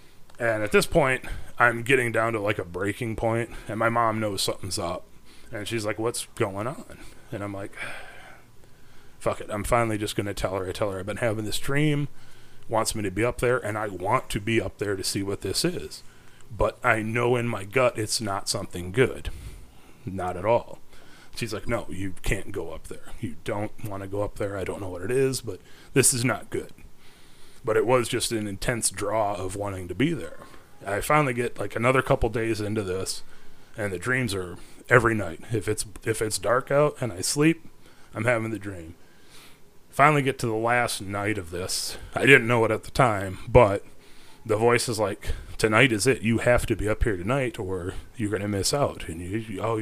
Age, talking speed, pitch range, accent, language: 30-49, 220 wpm, 100-120 Hz, American, English